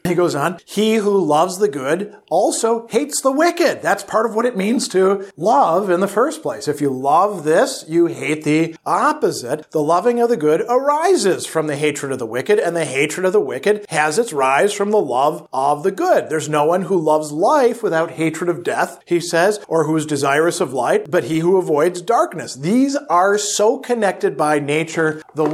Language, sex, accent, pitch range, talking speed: English, male, American, 150-205 Hz, 210 wpm